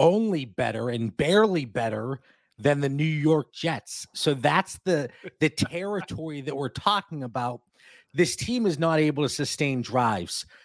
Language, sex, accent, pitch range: English, male, American, 135-175 Hz